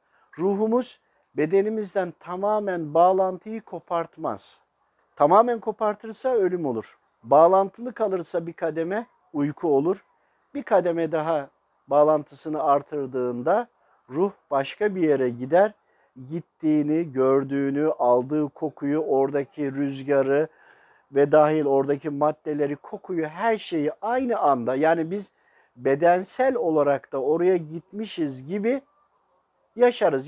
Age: 60-79